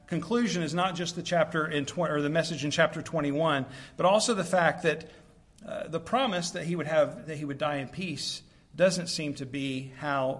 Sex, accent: male, American